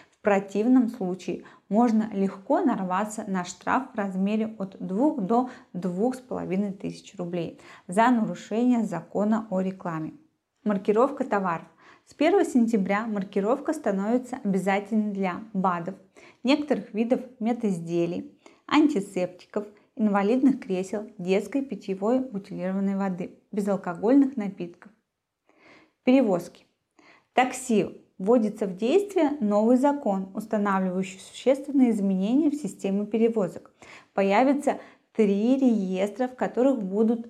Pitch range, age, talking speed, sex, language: 195-245 Hz, 20-39, 100 wpm, female, Russian